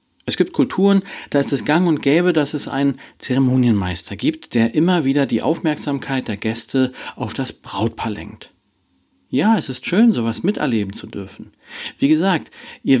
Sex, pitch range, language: male, 110-150 Hz, German